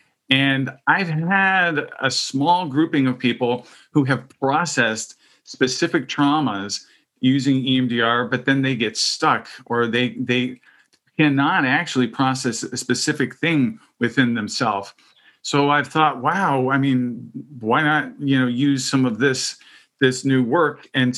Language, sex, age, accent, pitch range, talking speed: English, male, 40-59, American, 120-145 Hz, 140 wpm